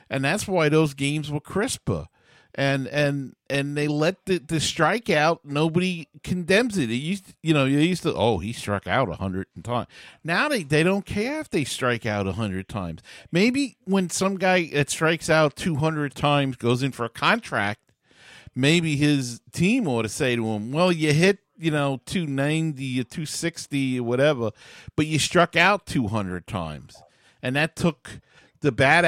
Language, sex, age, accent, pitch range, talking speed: English, male, 50-69, American, 115-155 Hz, 180 wpm